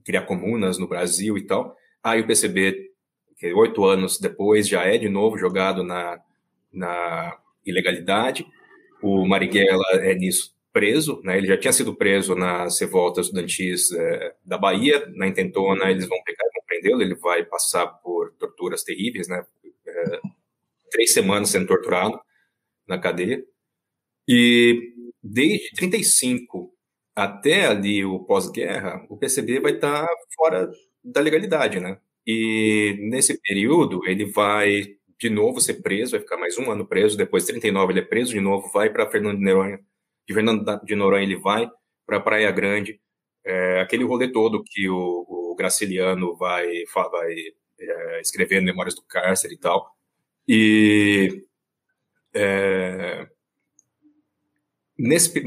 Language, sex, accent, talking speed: Portuguese, male, Brazilian, 145 wpm